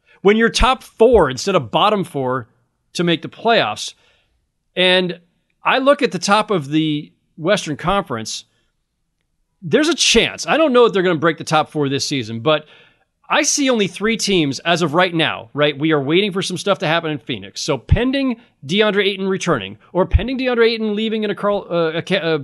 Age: 40-59